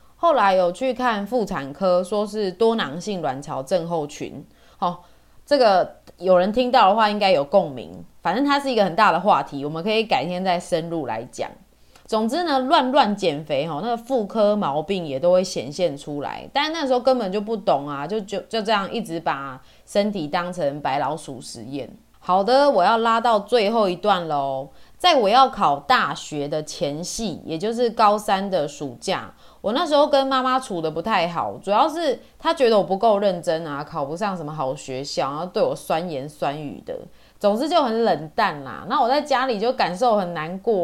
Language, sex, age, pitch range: Chinese, female, 20-39, 170-245 Hz